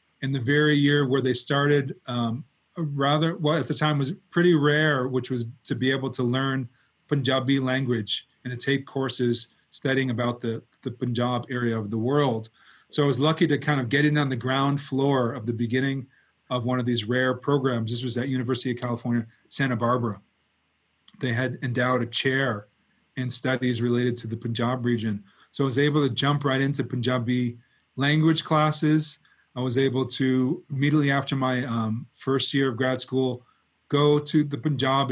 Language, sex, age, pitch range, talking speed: English, male, 30-49, 120-140 Hz, 185 wpm